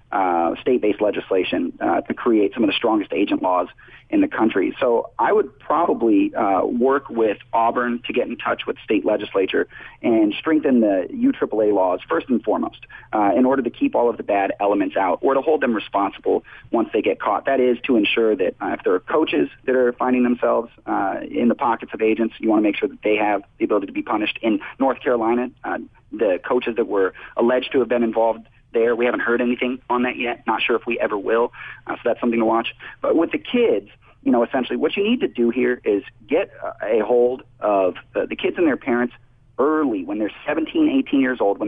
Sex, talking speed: male, 225 wpm